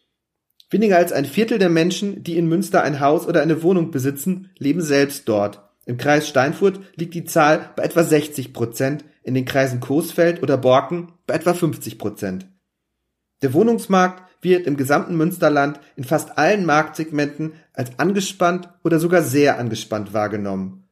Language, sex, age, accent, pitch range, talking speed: German, male, 40-59, German, 140-175 Hz, 155 wpm